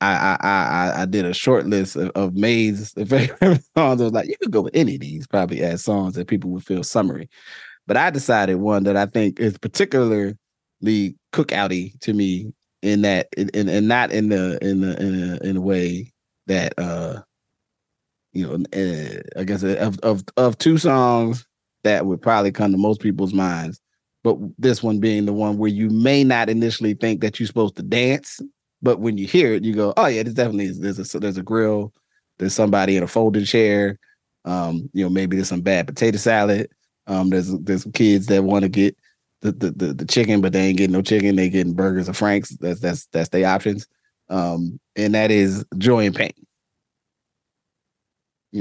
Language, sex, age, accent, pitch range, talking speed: English, male, 30-49, American, 95-110 Hz, 200 wpm